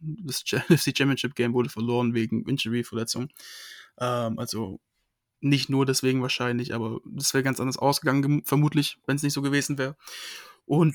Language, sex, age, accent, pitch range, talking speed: German, male, 20-39, German, 125-145 Hz, 150 wpm